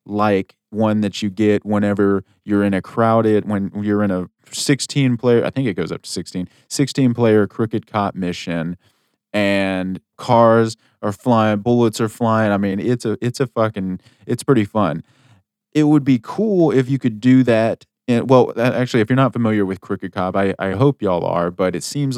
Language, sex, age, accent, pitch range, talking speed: English, male, 20-39, American, 95-115 Hz, 195 wpm